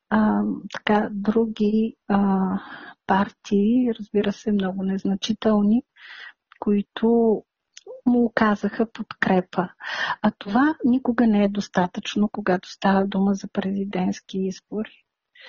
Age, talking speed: 50-69, 95 wpm